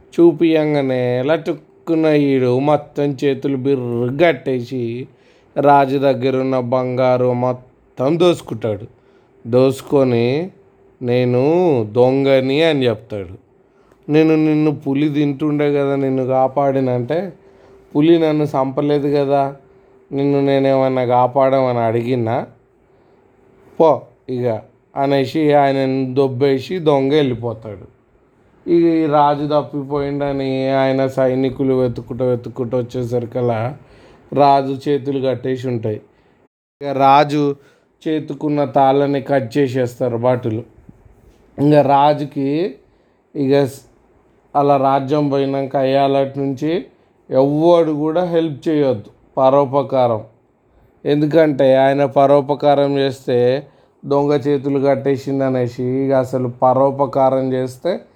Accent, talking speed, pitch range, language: native, 85 wpm, 130-145 Hz, Telugu